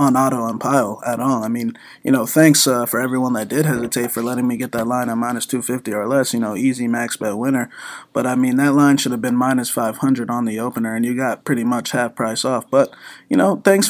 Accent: American